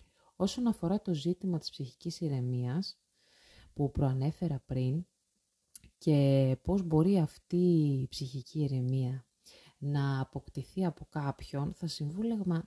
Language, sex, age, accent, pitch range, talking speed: Greek, female, 30-49, native, 135-175 Hz, 105 wpm